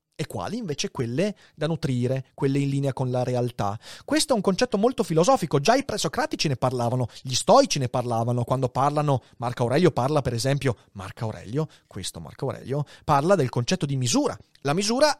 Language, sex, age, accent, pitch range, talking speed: Italian, male, 30-49, native, 130-195 Hz, 180 wpm